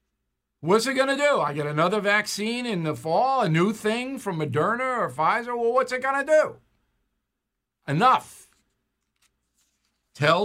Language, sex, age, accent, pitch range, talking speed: English, male, 60-79, American, 140-200 Hz, 155 wpm